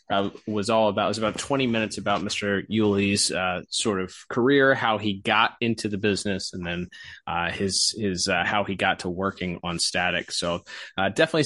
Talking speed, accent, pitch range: 195 wpm, American, 100-135 Hz